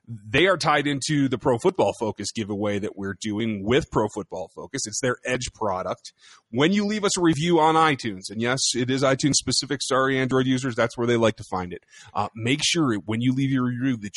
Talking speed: 225 wpm